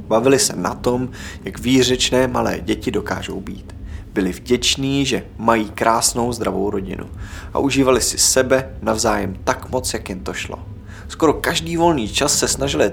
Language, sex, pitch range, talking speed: Czech, male, 105-140 Hz, 160 wpm